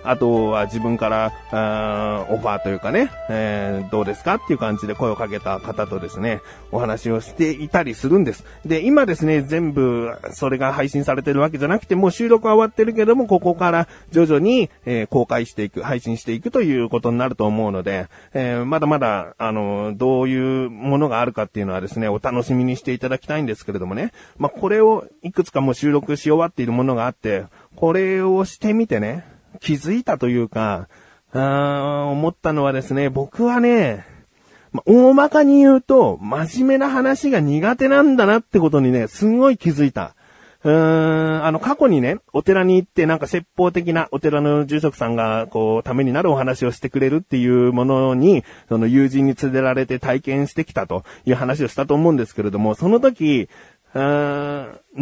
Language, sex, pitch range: Japanese, male, 115-175 Hz